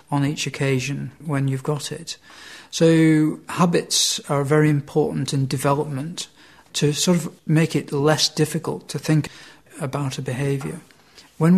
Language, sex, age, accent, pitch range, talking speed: English, male, 50-69, British, 135-155 Hz, 140 wpm